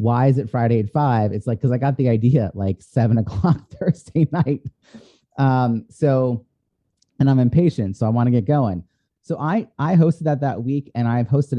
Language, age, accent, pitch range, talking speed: English, 30-49, American, 105-130 Hz, 205 wpm